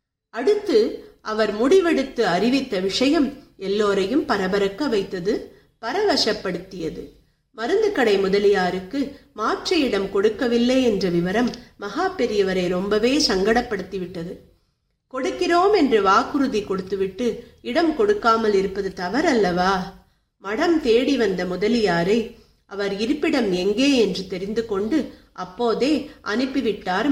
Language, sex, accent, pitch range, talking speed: Tamil, female, native, 190-270 Hz, 90 wpm